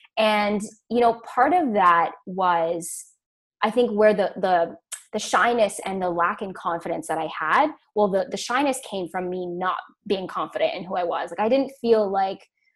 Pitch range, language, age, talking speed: 175-215 Hz, English, 10-29, 195 wpm